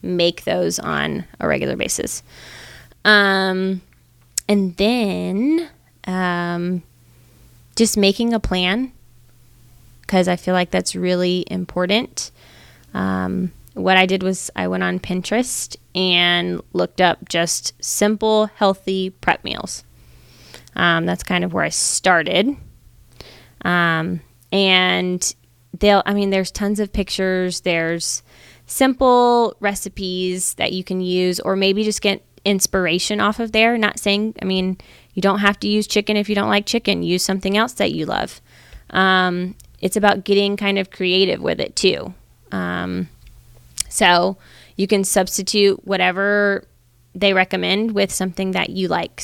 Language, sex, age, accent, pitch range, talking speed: English, female, 20-39, American, 165-200 Hz, 140 wpm